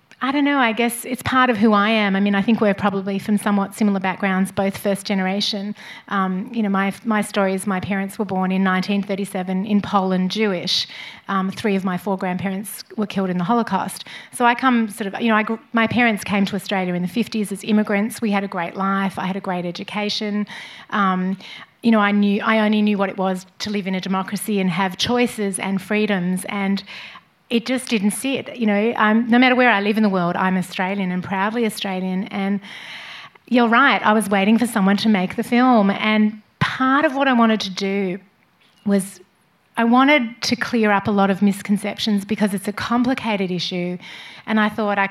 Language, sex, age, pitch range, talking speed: English, female, 30-49, 190-220 Hz, 210 wpm